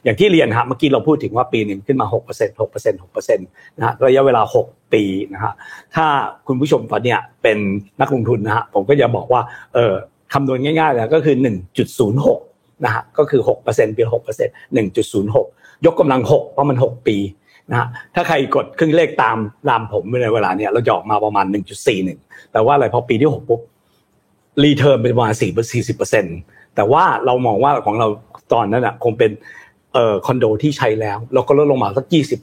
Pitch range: 110-150 Hz